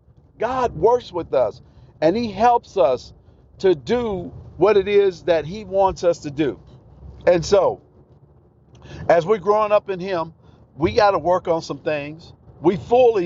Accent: American